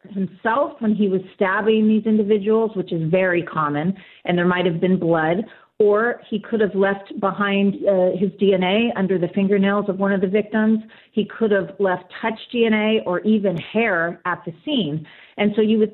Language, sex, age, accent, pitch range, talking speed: English, female, 40-59, American, 165-210 Hz, 190 wpm